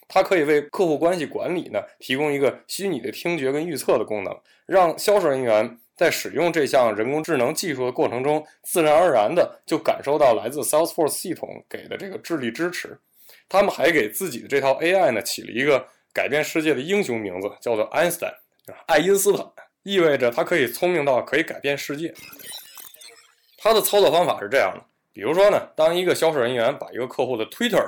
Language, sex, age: English, male, 20-39